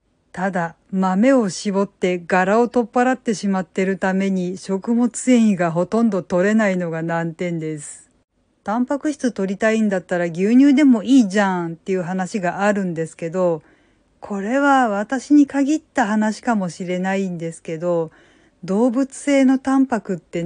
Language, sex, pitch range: Japanese, female, 185-255 Hz